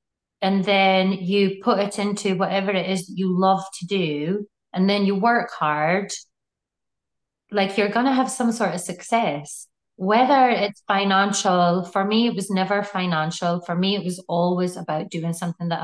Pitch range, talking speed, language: 170-215 Hz, 170 wpm, English